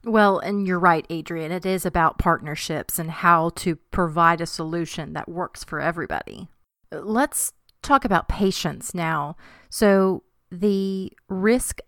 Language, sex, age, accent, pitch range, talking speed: English, female, 30-49, American, 170-200 Hz, 135 wpm